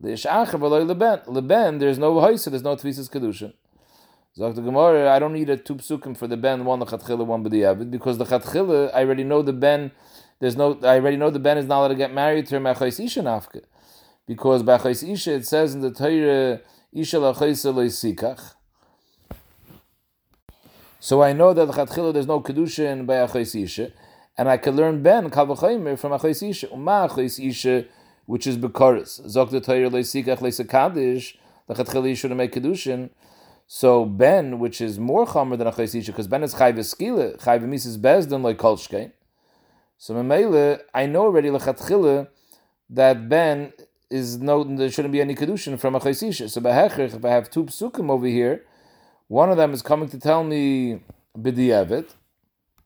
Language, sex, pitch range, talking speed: English, male, 125-145 Hz, 165 wpm